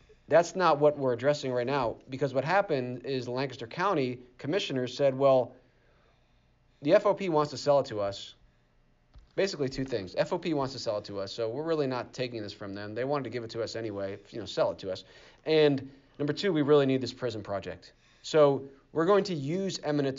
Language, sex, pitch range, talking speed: English, male, 120-145 Hz, 215 wpm